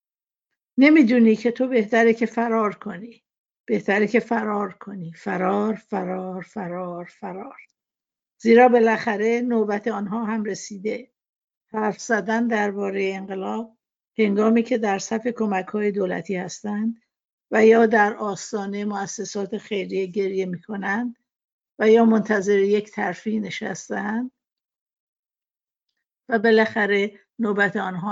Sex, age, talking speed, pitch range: female, 60-79, 105 wpm, 200-235 Hz